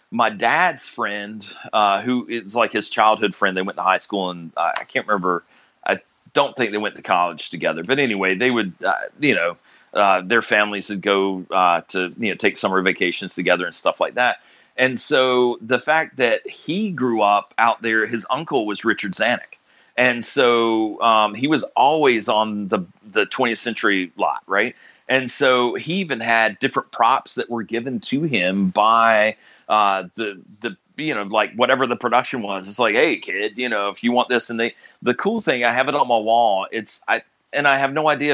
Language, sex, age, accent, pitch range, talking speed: English, male, 30-49, American, 100-125 Hz, 205 wpm